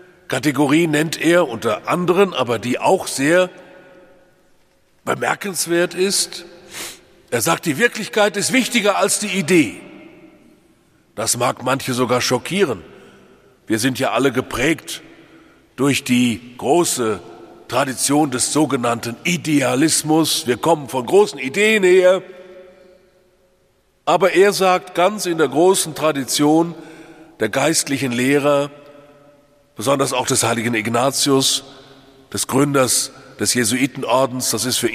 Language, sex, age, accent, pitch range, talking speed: English, male, 40-59, German, 135-200 Hz, 115 wpm